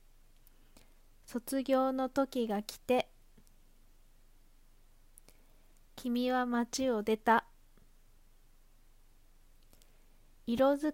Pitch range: 215-255 Hz